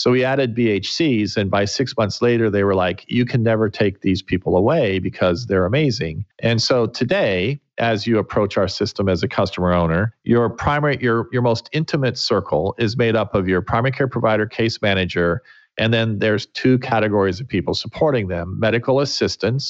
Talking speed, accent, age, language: 190 wpm, American, 40-59, English